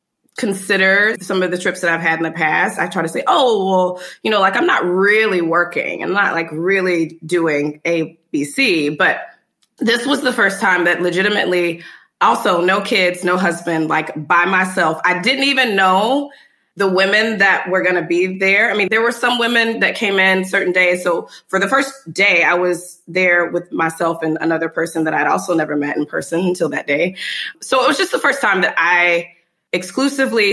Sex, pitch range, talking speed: female, 165-195 Hz, 200 wpm